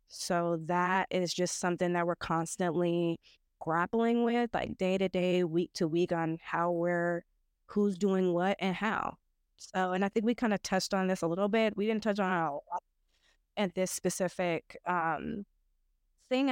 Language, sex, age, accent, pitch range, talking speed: English, female, 20-39, American, 175-215 Hz, 180 wpm